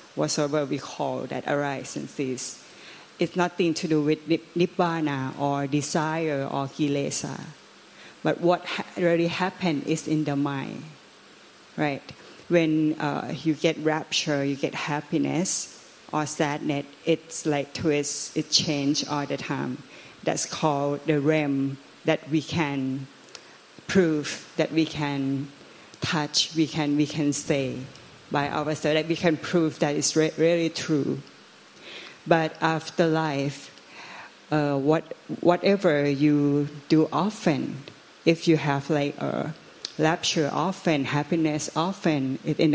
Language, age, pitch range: Thai, 30-49, 145-165 Hz